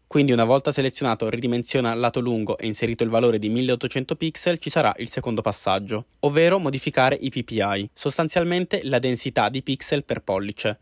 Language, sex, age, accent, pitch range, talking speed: Italian, male, 20-39, native, 115-145 Hz, 165 wpm